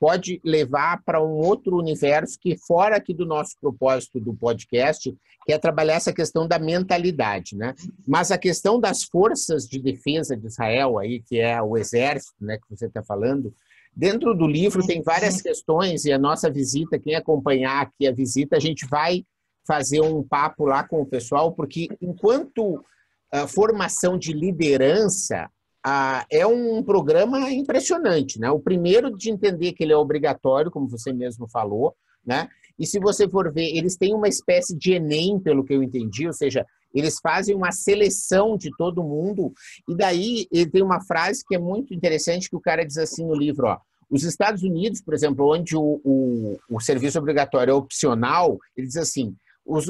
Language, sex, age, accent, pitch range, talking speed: Portuguese, male, 50-69, Brazilian, 140-195 Hz, 180 wpm